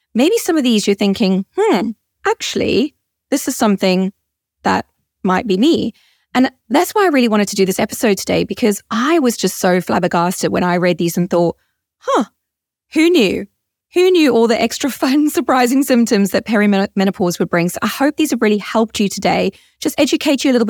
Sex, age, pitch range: female, 20-39, 195-260 Hz